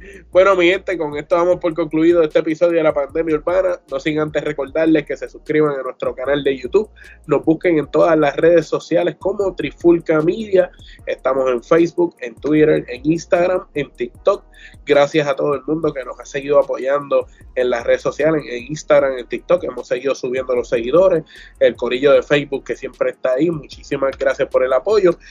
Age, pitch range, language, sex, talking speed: 20-39, 150-180 Hz, Spanish, male, 190 wpm